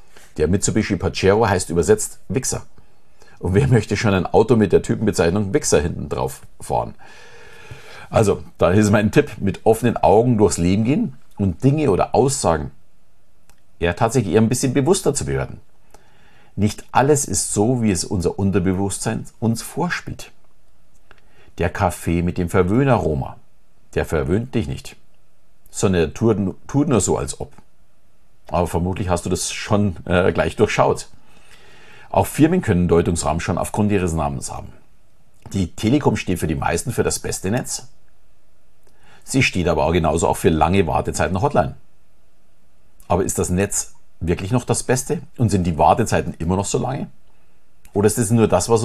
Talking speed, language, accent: 155 wpm, German, German